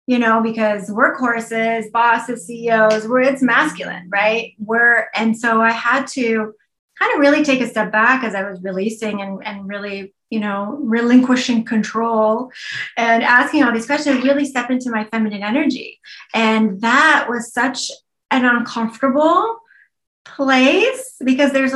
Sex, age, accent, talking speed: female, 30-49, American, 145 wpm